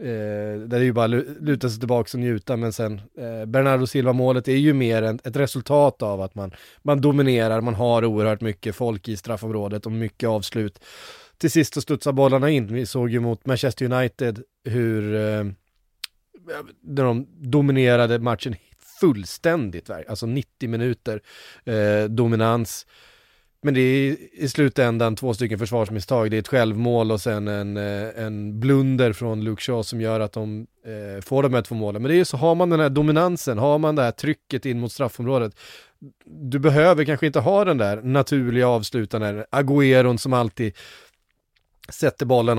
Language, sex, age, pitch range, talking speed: Swedish, male, 30-49, 110-130 Hz, 170 wpm